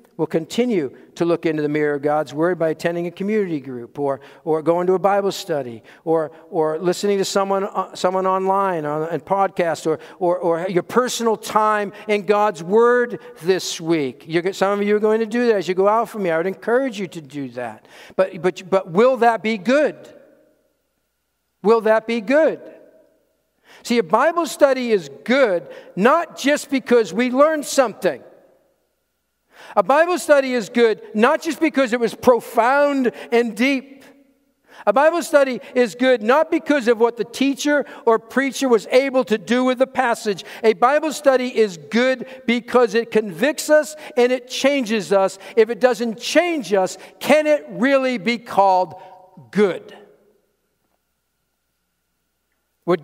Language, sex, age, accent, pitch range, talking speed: English, male, 50-69, American, 180-255 Hz, 165 wpm